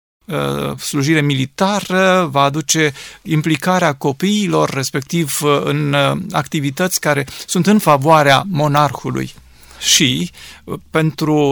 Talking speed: 85 wpm